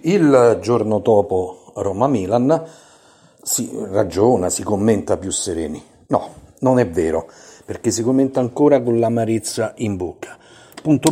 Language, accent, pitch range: Italian, native, 105-120 Hz